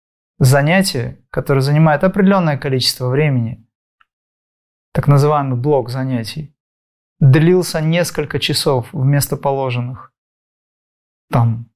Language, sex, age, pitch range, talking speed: Russian, male, 30-49, 125-155 Hz, 80 wpm